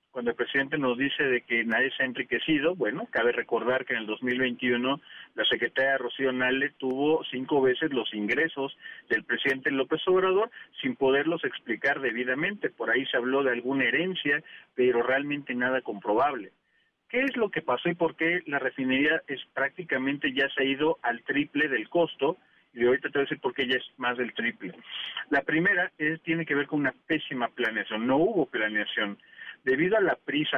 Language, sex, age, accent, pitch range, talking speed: Spanish, male, 40-59, Mexican, 125-155 Hz, 190 wpm